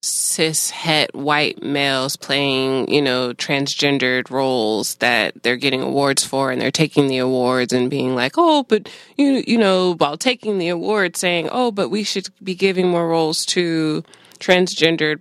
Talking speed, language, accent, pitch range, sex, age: 160 wpm, English, American, 135-165 Hz, female, 20-39